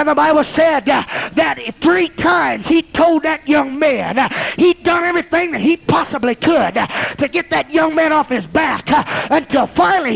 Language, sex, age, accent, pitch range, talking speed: English, male, 30-49, American, 245-325 Hz, 190 wpm